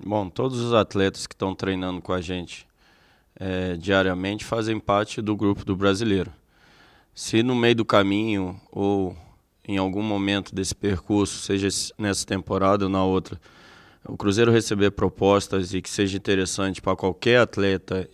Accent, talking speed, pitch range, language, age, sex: Brazilian, 150 wpm, 95-110 Hz, Portuguese, 20-39, male